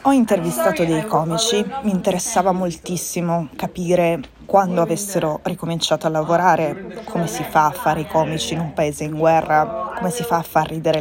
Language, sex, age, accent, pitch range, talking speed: Italian, female, 20-39, native, 150-170 Hz, 170 wpm